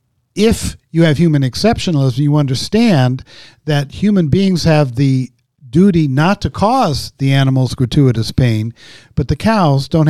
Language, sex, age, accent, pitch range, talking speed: English, male, 50-69, American, 125-155 Hz, 145 wpm